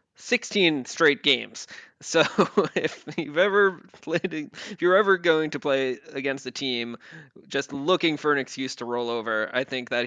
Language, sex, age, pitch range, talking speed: English, male, 20-39, 120-150 Hz, 165 wpm